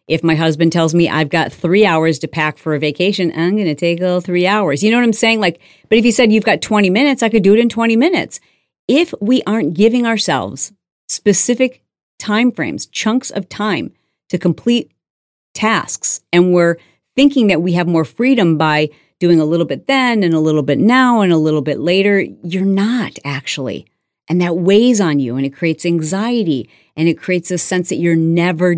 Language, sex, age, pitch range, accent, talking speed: English, female, 40-59, 160-215 Hz, American, 205 wpm